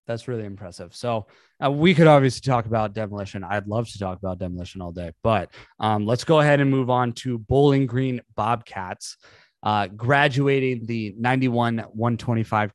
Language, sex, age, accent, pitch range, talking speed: English, male, 20-39, American, 100-125 Hz, 165 wpm